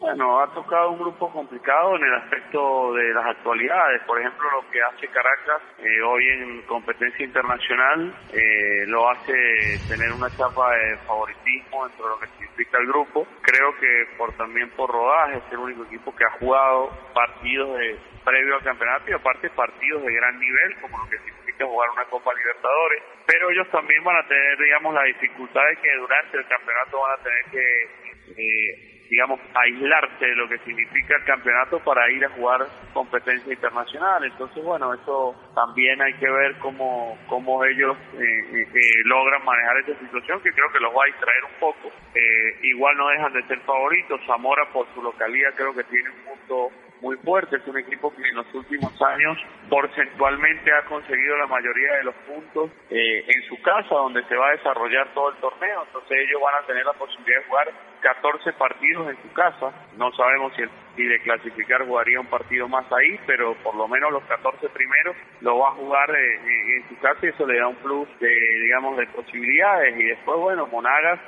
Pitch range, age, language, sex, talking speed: 120-140 Hz, 40-59, Spanish, male, 195 wpm